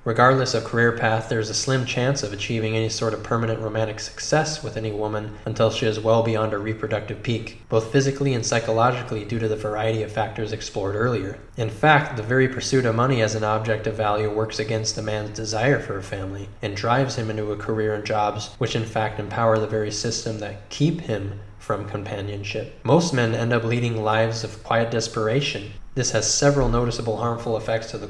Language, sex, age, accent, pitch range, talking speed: English, male, 20-39, American, 110-125 Hz, 205 wpm